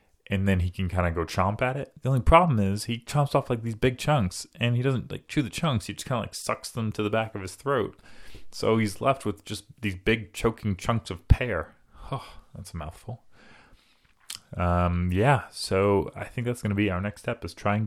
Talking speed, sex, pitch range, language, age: 235 wpm, male, 85-115 Hz, English, 30-49